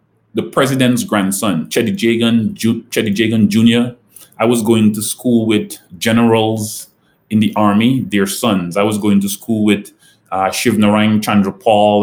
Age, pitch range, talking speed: 20-39, 105-120 Hz, 150 wpm